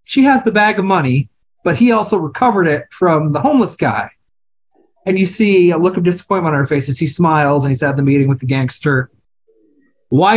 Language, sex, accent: English, male, American